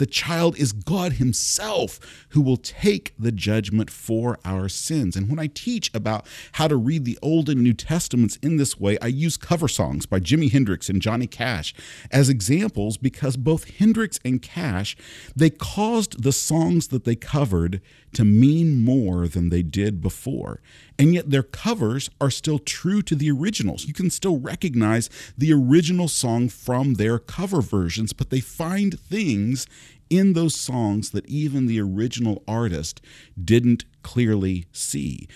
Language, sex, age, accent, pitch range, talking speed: English, male, 50-69, American, 105-150 Hz, 165 wpm